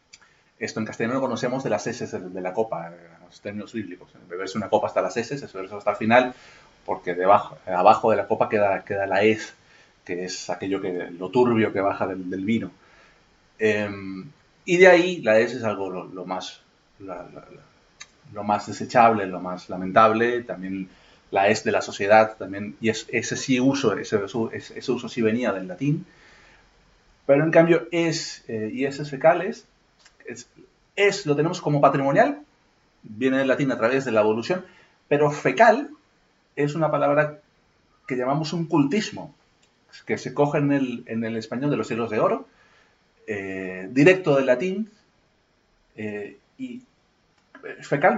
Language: Spanish